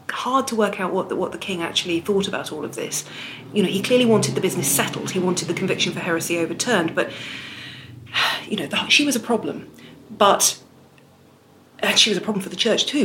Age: 40-59